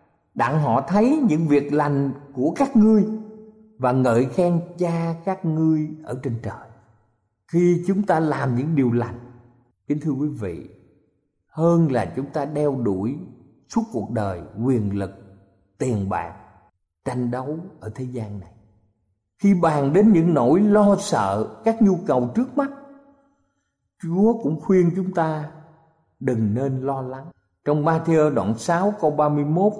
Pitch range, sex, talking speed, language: 120-190 Hz, male, 150 wpm, Vietnamese